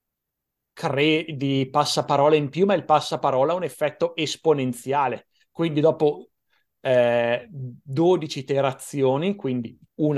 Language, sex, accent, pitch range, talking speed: Italian, male, native, 125-150 Hz, 105 wpm